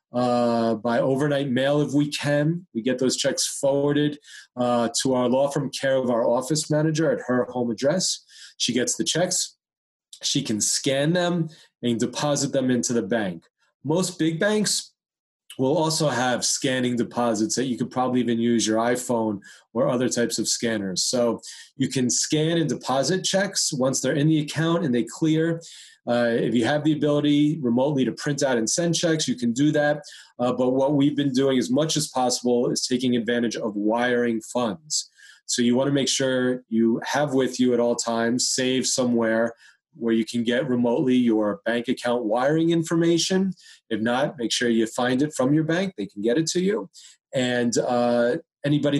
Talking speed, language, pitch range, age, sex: 185 wpm, English, 120-150 Hz, 30-49, male